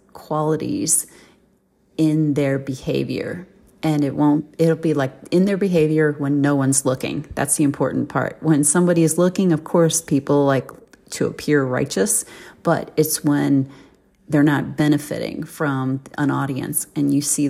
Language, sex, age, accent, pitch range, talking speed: English, female, 30-49, American, 145-175 Hz, 150 wpm